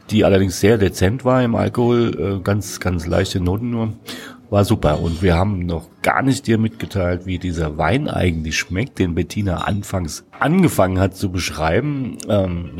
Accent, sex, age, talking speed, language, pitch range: German, male, 40-59, 165 wpm, German, 90-115 Hz